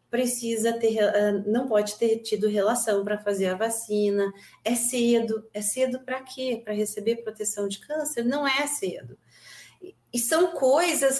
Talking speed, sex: 150 wpm, female